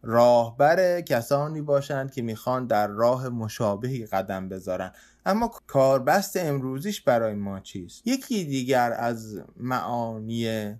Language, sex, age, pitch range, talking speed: Persian, male, 20-39, 115-160 Hz, 110 wpm